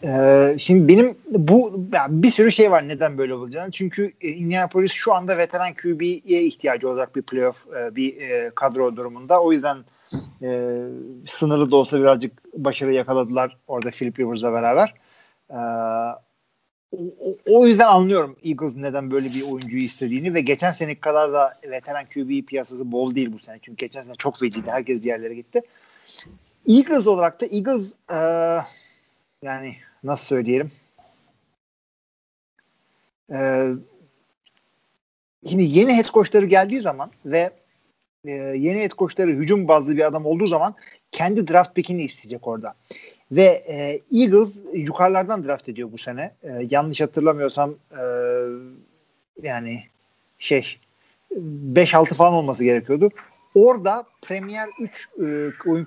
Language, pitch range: Turkish, 130-185 Hz